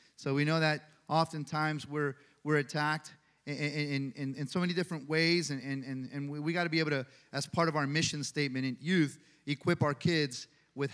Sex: male